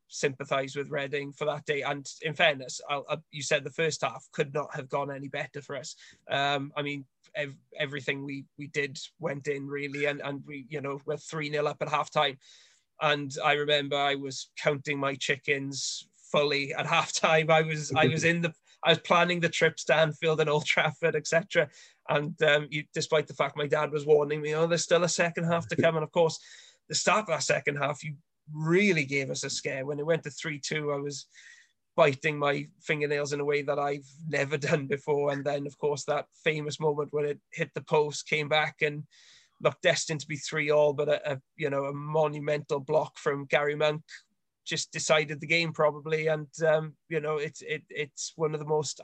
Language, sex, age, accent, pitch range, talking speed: English, male, 20-39, British, 145-160 Hz, 215 wpm